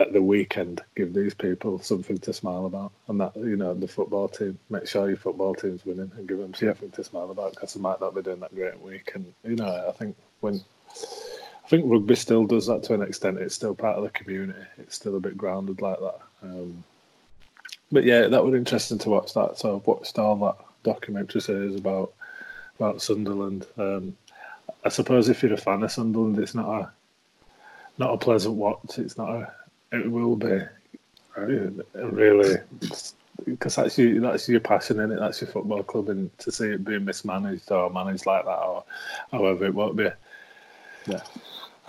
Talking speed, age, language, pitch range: 195 wpm, 20-39, English, 100-120 Hz